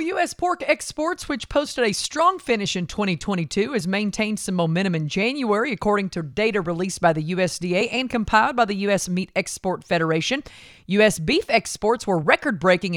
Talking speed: 165 wpm